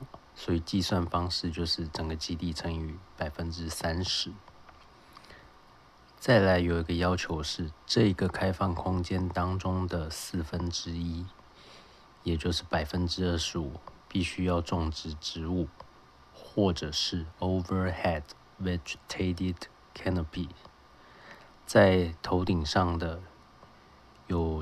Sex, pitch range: male, 80-95 Hz